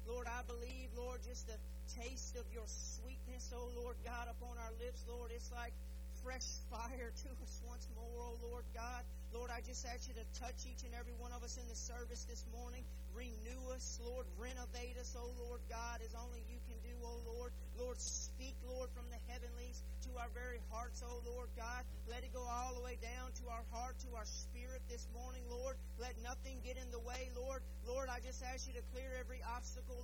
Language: English